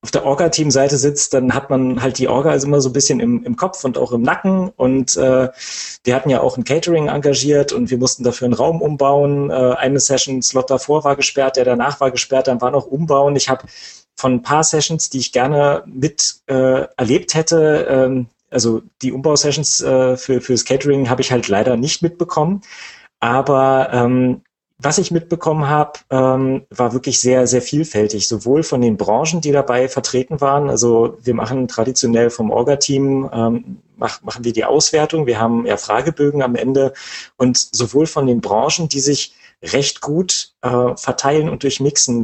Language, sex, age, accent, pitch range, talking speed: German, male, 30-49, German, 125-145 Hz, 185 wpm